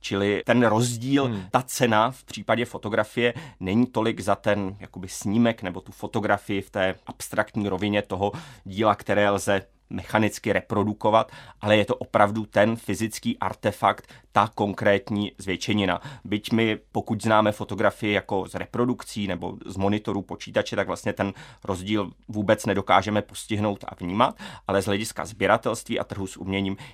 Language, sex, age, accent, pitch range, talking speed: Czech, male, 30-49, native, 100-115 Hz, 145 wpm